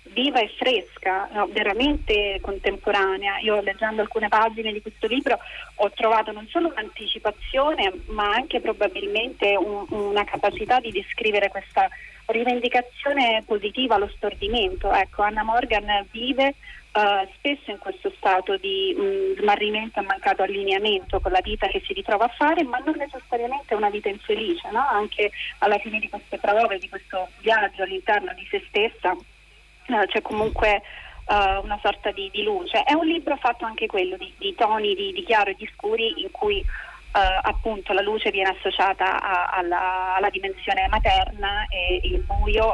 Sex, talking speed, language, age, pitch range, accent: female, 155 wpm, Italian, 30-49, 205-330 Hz, native